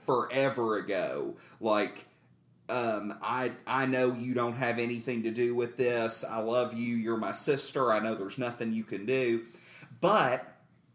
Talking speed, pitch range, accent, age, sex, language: 160 wpm, 115-150 Hz, American, 30-49, male, English